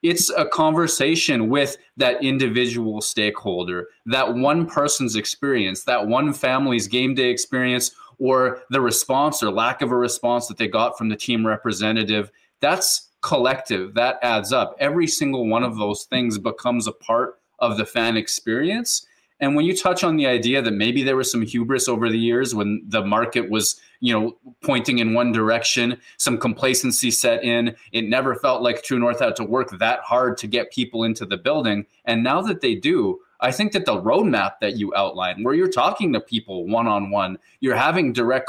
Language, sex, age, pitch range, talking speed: English, male, 20-39, 115-170 Hz, 190 wpm